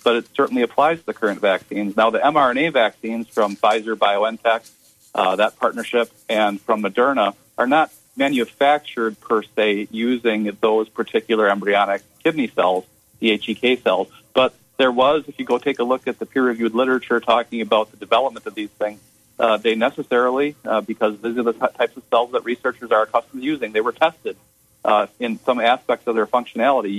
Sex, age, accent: male, 40-59, American